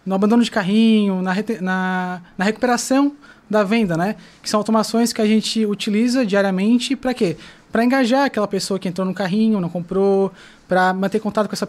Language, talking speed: Portuguese, 190 wpm